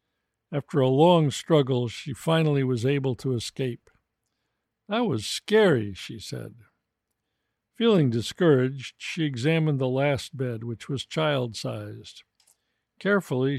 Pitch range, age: 115-185 Hz, 60-79